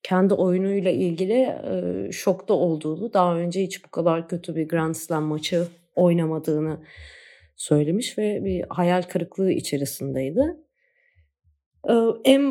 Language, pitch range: Turkish, 170-225 Hz